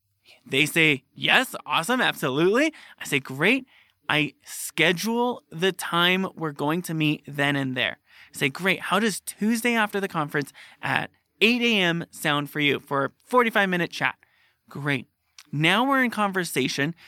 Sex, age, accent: male, 20-39, American